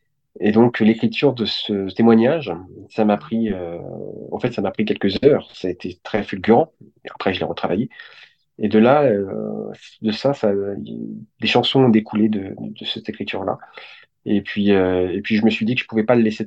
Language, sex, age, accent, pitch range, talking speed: French, male, 30-49, French, 95-115 Hz, 210 wpm